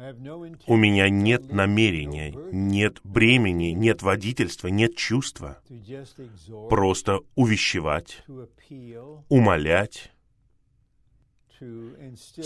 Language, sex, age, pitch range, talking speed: Russian, male, 30-49, 100-125 Hz, 65 wpm